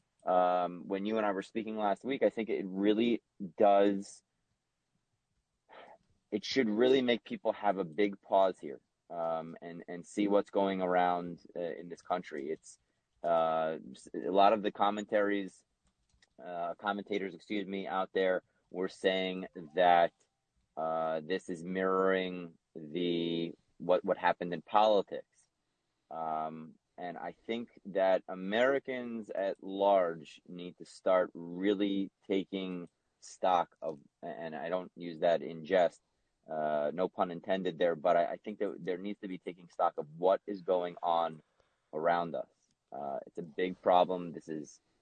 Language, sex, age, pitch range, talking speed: English, male, 30-49, 85-105 Hz, 150 wpm